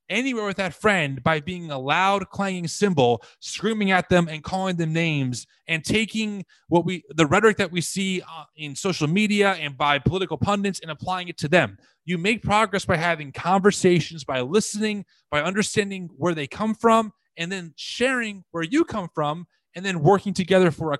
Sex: male